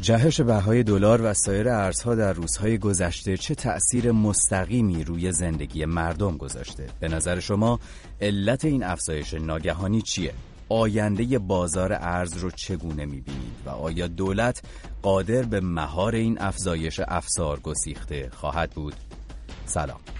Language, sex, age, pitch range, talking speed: English, male, 30-49, 85-105 Hz, 130 wpm